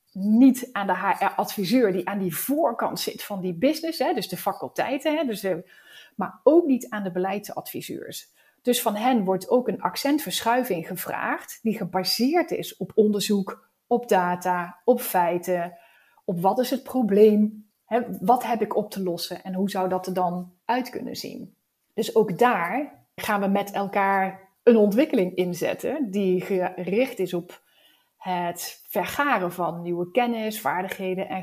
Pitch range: 190-255 Hz